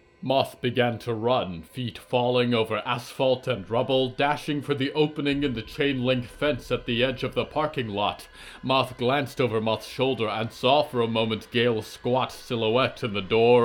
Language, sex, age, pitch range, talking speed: English, male, 30-49, 100-130 Hz, 180 wpm